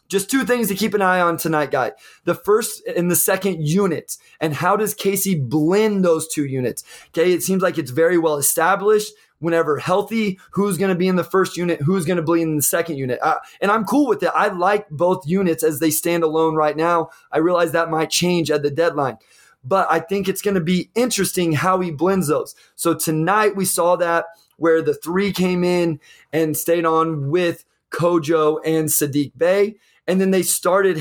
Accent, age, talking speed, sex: American, 20-39, 210 wpm, male